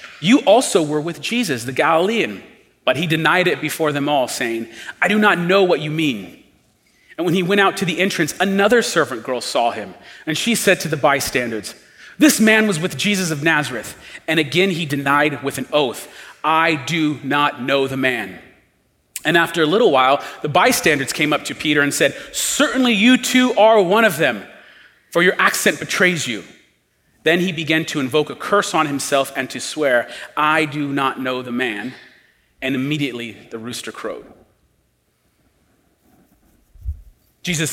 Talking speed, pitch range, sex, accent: 175 wpm, 130-175 Hz, male, American